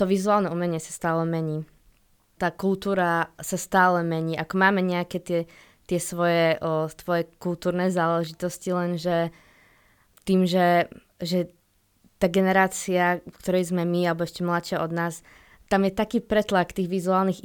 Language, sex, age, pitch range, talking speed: Slovak, female, 20-39, 165-180 Hz, 135 wpm